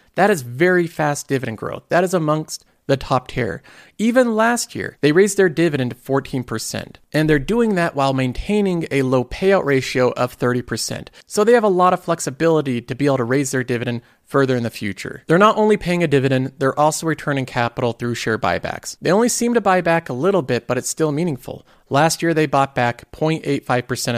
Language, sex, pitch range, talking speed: English, male, 130-185 Hz, 205 wpm